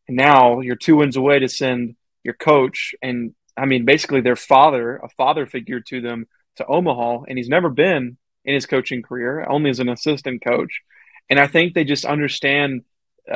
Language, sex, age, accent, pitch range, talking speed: English, male, 20-39, American, 125-140 Hz, 190 wpm